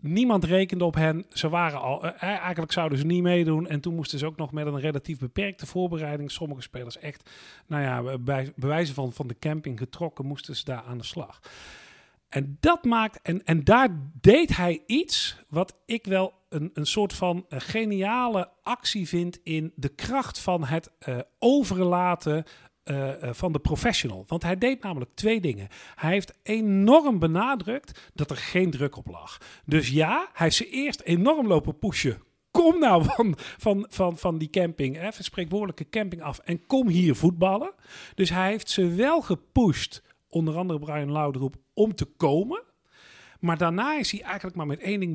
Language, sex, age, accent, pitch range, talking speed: Dutch, male, 40-59, Dutch, 150-205 Hz, 180 wpm